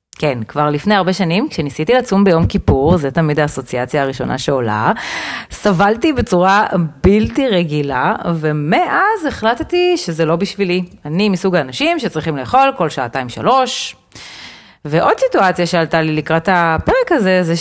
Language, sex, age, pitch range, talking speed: Hebrew, female, 30-49, 155-220 Hz, 135 wpm